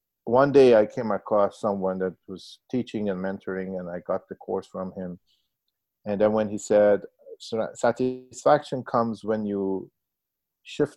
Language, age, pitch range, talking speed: English, 50-69, 100-135 Hz, 155 wpm